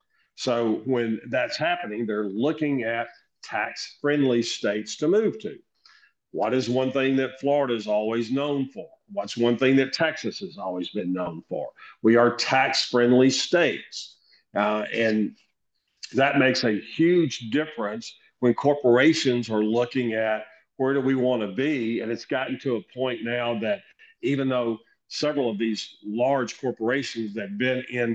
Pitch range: 110-130 Hz